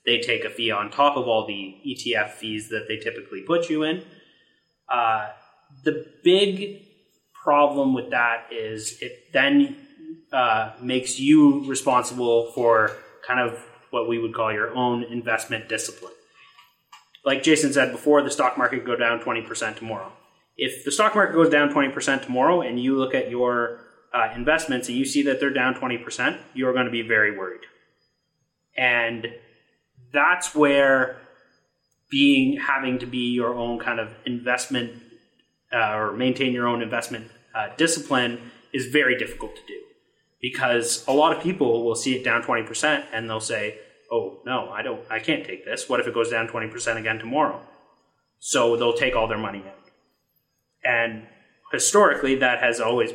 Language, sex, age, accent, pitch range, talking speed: English, male, 30-49, American, 115-155 Hz, 165 wpm